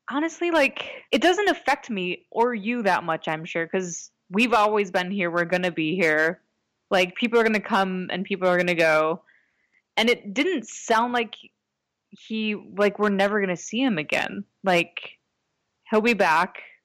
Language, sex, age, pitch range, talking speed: English, female, 20-39, 180-220 Hz, 185 wpm